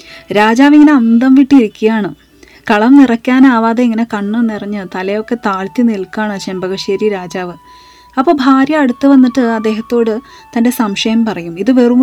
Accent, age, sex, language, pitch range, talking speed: native, 30-49, female, Malayalam, 210-260 Hz, 120 wpm